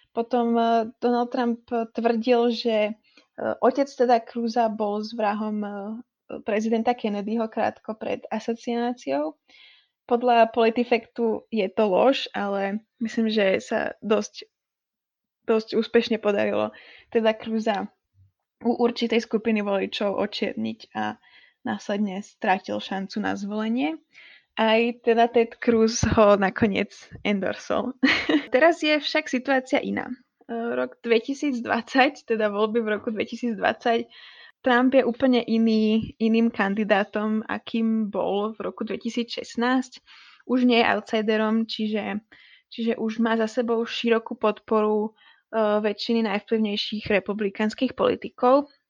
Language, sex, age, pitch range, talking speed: Slovak, female, 20-39, 215-240 Hz, 110 wpm